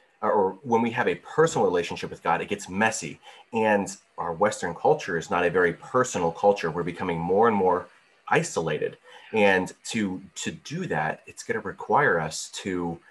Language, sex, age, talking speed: English, male, 30-49, 180 wpm